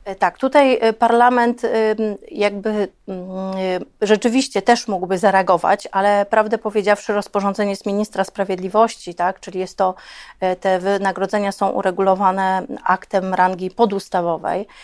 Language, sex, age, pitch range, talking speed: Polish, female, 30-49, 180-210 Hz, 105 wpm